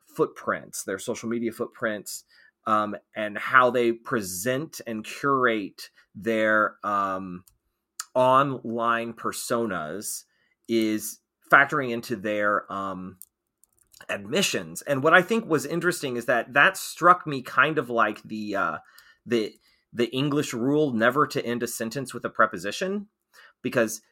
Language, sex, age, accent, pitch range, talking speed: English, male, 30-49, American, 120-175 Hz, 125 wpm